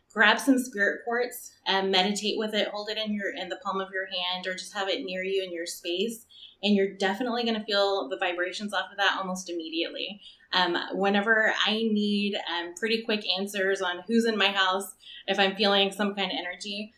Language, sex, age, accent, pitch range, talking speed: English, female, 20-39, American, 185-215 Hz, 205 wpm